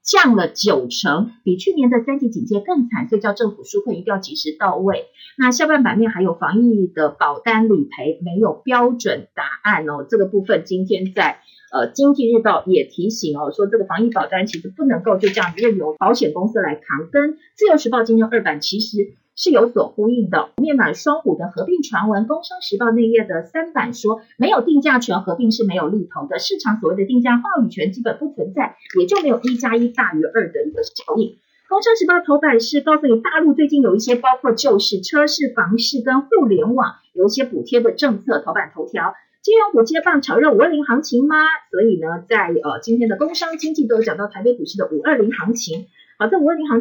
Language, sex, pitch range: Chinese, female, 205-290 Hz